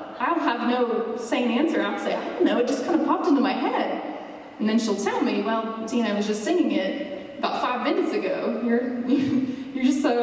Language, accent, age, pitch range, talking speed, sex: English, American, 20-39, 215-280 Hz, 210 wpm, female